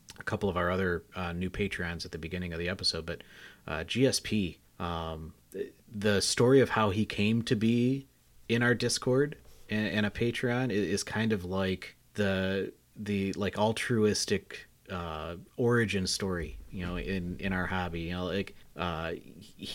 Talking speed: 165 wpm